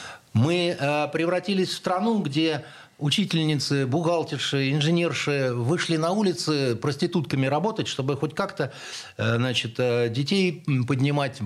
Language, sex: Russian, male